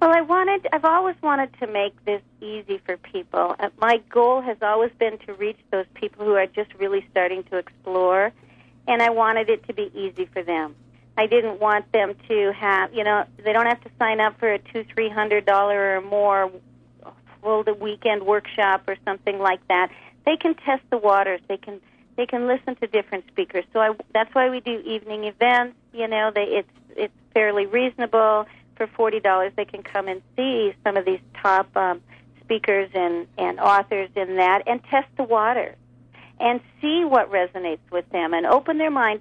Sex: female